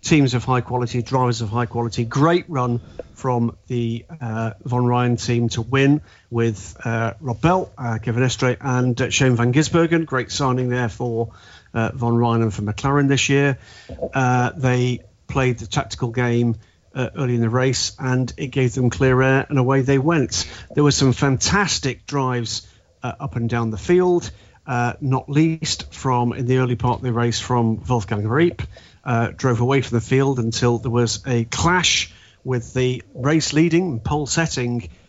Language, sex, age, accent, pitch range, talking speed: English, male, 40-59, British, 115-140 Hz, 180 wpm